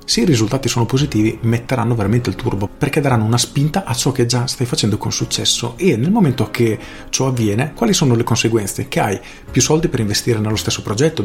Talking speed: 215 wpm